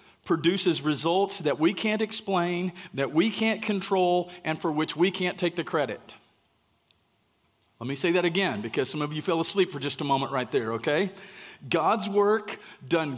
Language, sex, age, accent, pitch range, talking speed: English, male, 40-59, American, 155-200 Hz, 180 wpm